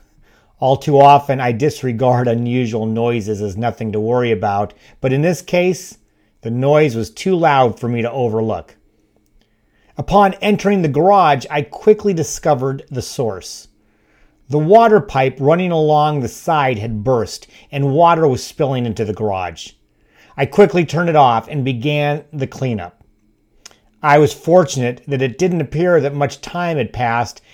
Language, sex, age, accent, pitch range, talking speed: English, male, 40-59, American, 110-155 Hz, 155 wpm